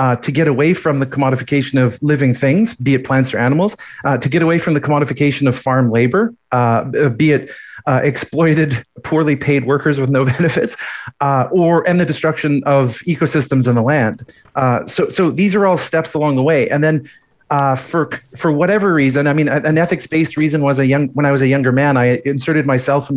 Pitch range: 130-165 Hz